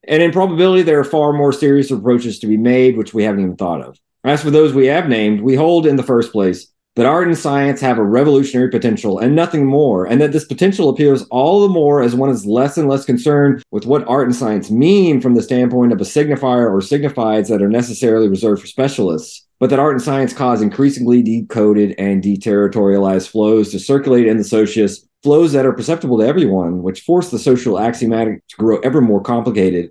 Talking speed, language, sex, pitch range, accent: 215 wpm, English, male, 100-135 Hz, American